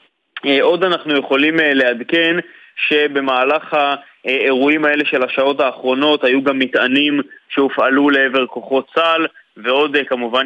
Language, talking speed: Hebrew, 110 wpm